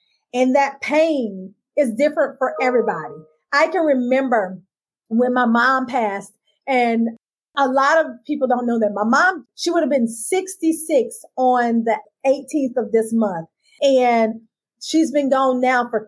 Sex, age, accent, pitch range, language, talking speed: female, 40-59, American, 225-315 Hz, English, 155 wpm